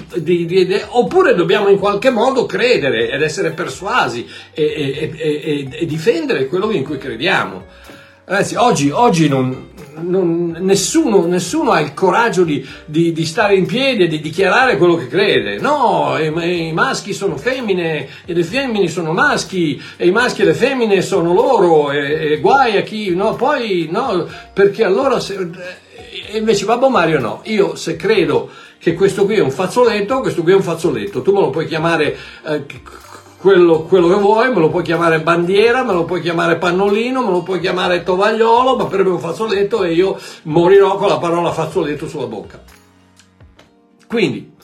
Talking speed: 180 wpm